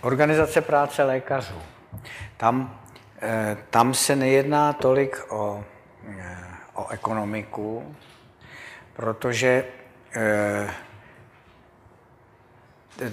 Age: 60-79